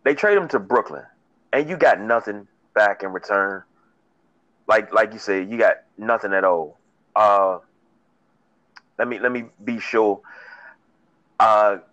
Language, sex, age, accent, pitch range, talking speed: English, male, 30-49, American, 110-165 Hz, 145 wpm